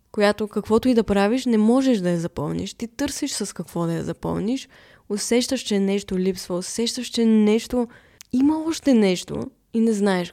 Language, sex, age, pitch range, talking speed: Bulgarian, female, 20-39, 180-215 Hz, 175 wpm